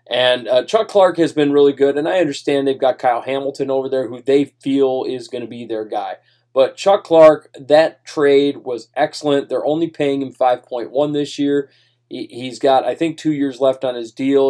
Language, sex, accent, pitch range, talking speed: English, male, American, 125-155 Hz, 205 wpm